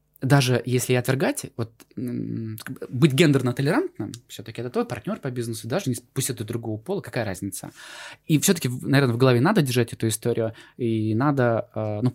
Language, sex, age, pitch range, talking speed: Russian, male, 20-39, 110-135 Hz, 165 wpm